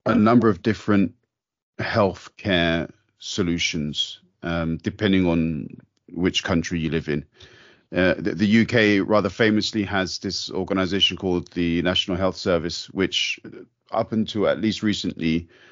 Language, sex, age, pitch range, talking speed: English, male, 40-59, 90-105 Hz, 135 wpm